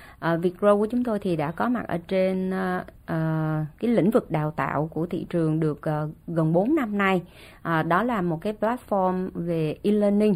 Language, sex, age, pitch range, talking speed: Vietnamese, female, 20-39, 165-220 Hz, 205 wpm